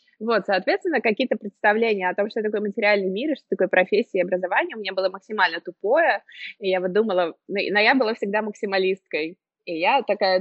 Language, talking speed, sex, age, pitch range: Russian, 185 wpm, female, 20-39, 190-255 Hz